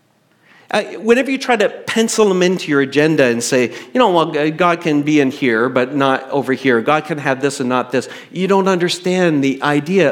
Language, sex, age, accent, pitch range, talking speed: English, male, 50-69, American, 135-190 Hz, 210 wpm